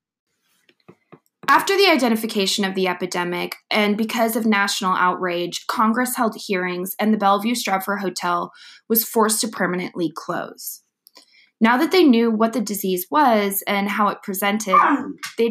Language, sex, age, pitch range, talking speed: English, female, 20-39, 185-235 Hz, 145 wpm